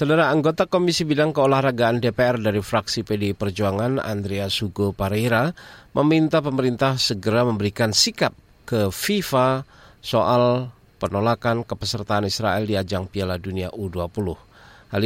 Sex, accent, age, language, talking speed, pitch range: male, native, 40-59, Indonesian, 115 wpm, 100-140 Hz